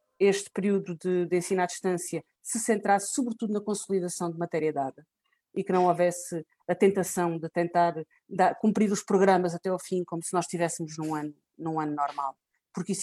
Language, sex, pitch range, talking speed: Portuguese, female, 165-190 Hz, 190 wpm